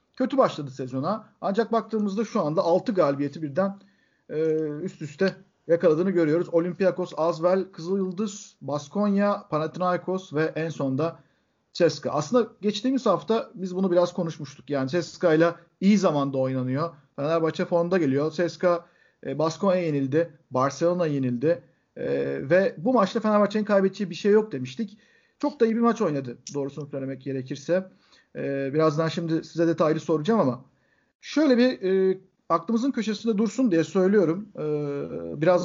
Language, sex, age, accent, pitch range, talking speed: Turkish, male, 50-69, native, 155-205 Hz, 135 wpm